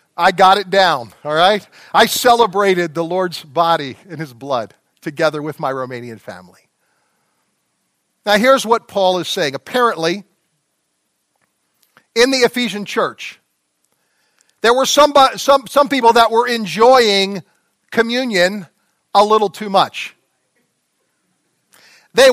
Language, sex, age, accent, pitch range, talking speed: English, male, 50-69, American, 165-240 Hz, 120 wpm